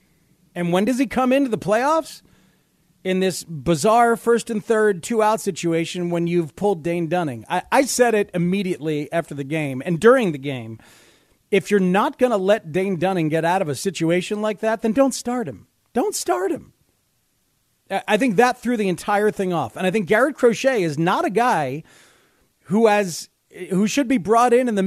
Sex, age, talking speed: male, 40-59, 195 wpm